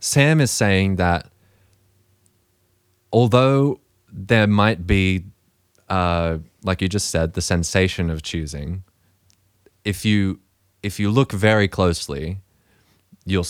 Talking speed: 110 wpm